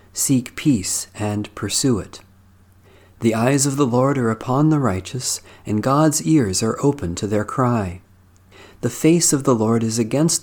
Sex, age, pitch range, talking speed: male, 40-59, 95-130 Hz, 165 wpm